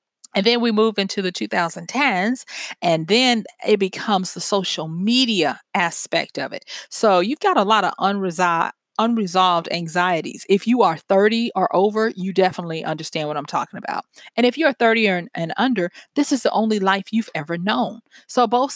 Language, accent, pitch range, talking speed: English, American, 170-225 Hz, 175 wpm